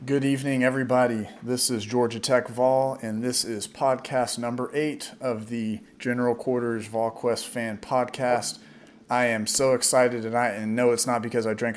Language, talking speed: English, 170 wpm